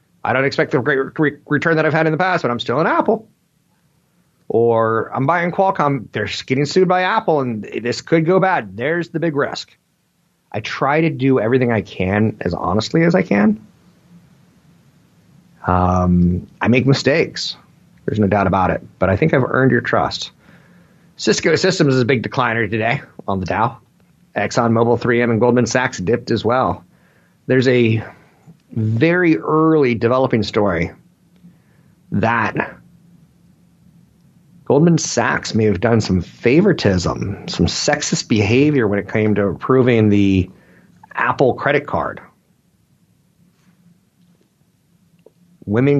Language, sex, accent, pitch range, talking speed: English, male, American, 110-170 Hz, 145 wpm